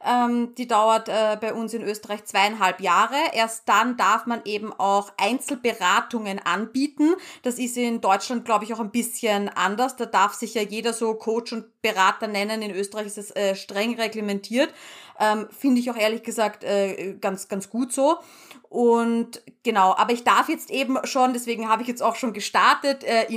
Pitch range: 210-245 Hz